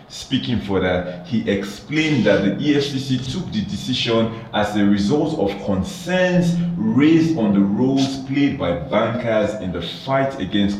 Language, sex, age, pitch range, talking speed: English, male, 40-59, 100-140 Hz, 150 wpm